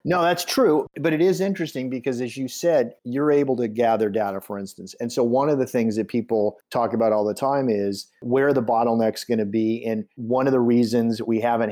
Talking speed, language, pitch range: 230 wpm, English, 115-130 Hz